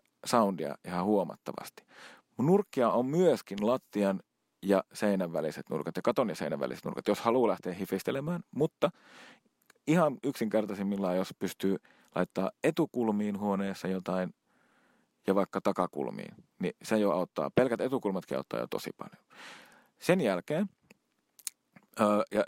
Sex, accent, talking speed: male, native, 125 wpm